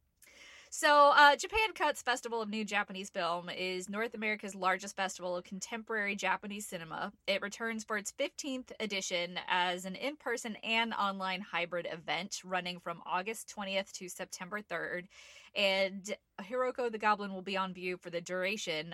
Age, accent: 20-39, American